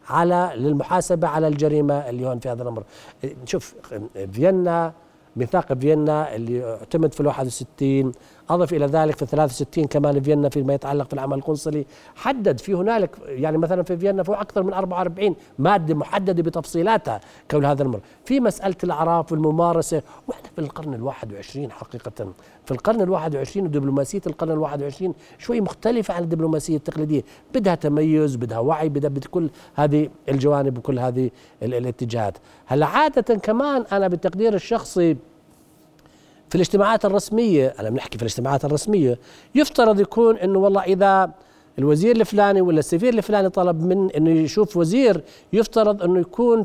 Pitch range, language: 145-195 Hz, Arabic